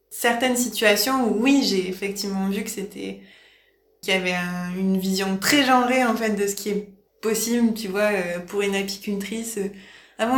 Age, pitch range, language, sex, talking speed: 20-39, 195-235 Hz, French, female, 175 wpm